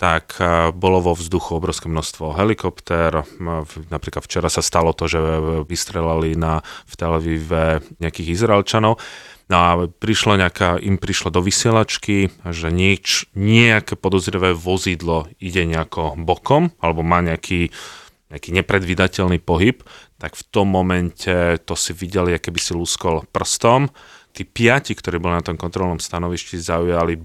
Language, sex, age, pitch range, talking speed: Slovak, male, 30-49, 85-95 Hz, 135 wpm